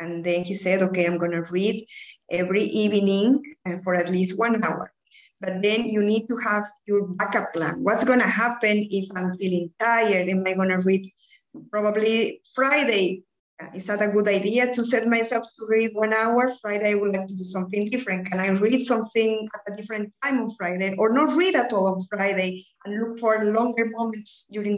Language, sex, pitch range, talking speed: English, female, 190-230 Hz, 200 wpm